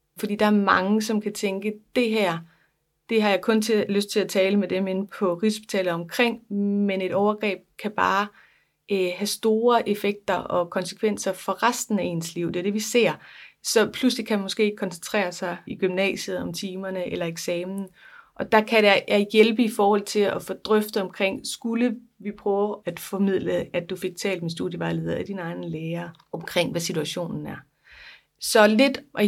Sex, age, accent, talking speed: female, 30-49, native, 190 wpm